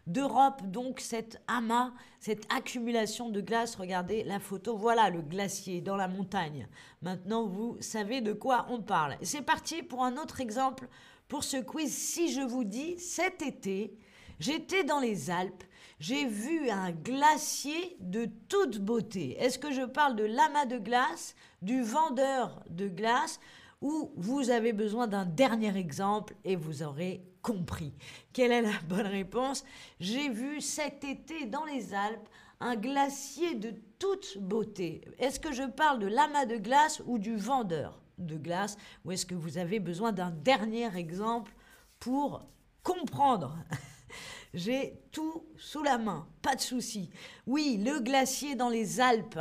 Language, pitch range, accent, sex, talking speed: French, 200-270 Hz, French, female, 155 wpm